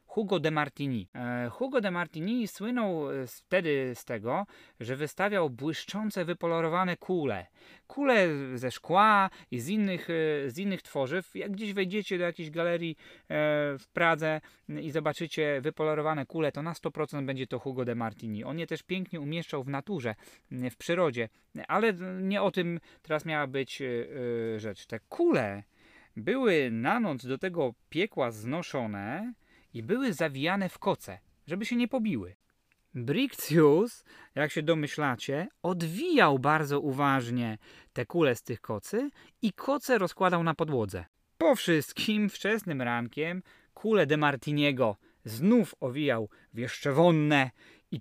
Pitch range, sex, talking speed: 135-185 Hz, male, 135 wpm